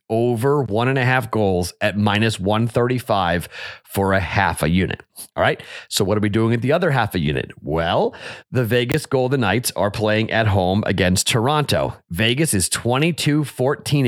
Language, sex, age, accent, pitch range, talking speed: English, male, 30-49, American, 100-130 Hz, 180 wpm